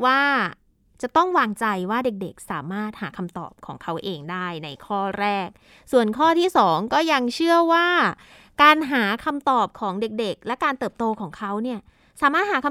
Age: 20-39